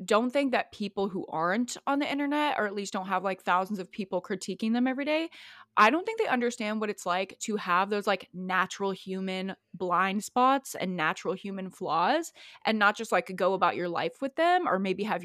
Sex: female